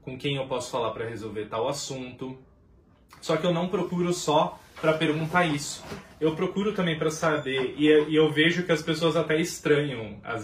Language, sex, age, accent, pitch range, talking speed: Portuguese, male, 20-39, Brazilian, 110-150 Hz, 185 wpm